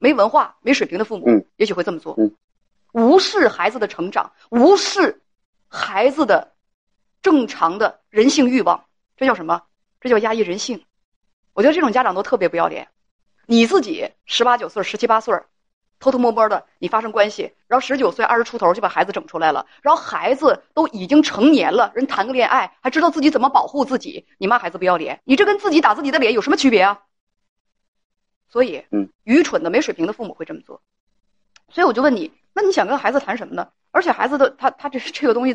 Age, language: 30-49, Chinese